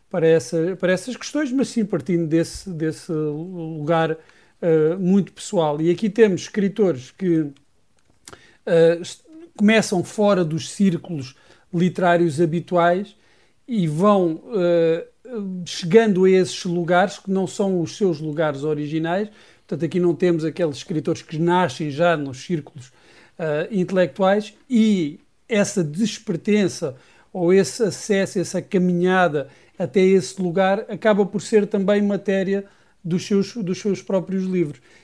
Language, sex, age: Portuguese, male, 50-69